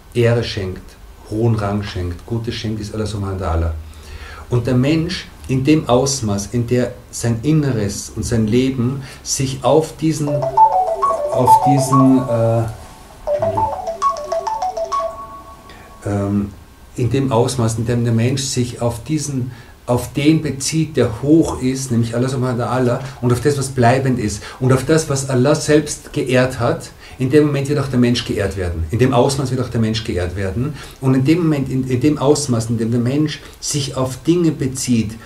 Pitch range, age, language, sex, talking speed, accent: 110-140 Hz, 50-69, German, male, 160 wpm, German